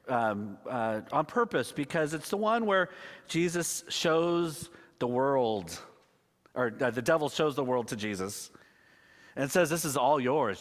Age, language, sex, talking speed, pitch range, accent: 40-59, English, male, 160 wpm, 115-175 Hz, American